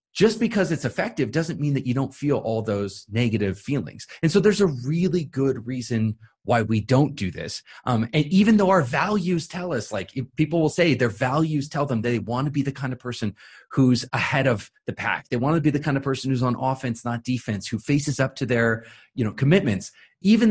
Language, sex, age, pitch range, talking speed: English, male, 30-49, 115-160 Hz, 225 wpm